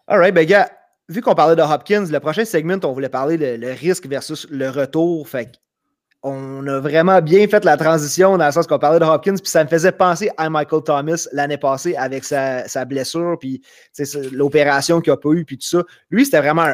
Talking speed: 220 wpm